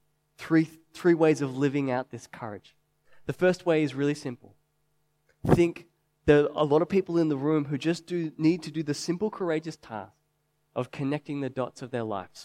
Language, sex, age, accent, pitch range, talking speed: English, male, 20-39, Australian, 135-160 Hz, 200 wpm